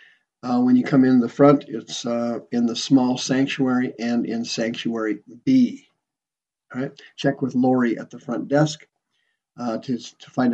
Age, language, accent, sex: 50-69, English, American, male